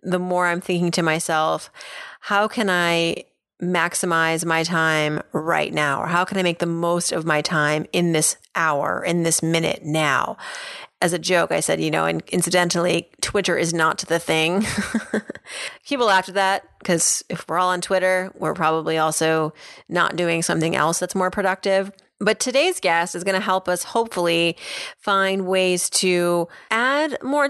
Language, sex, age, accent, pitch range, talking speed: English, female, 30-49, American, 170-205 Hz, 170 wpm